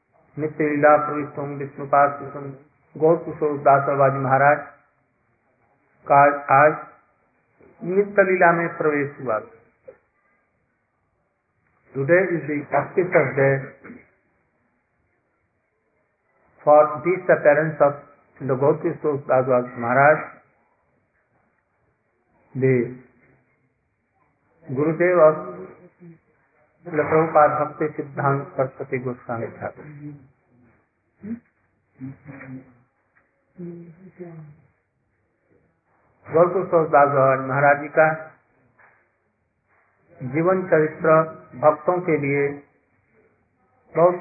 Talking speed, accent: 50 wpm, native